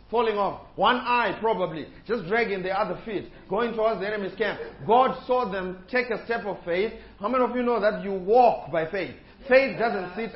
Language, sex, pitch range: English, male, 200-260 Hz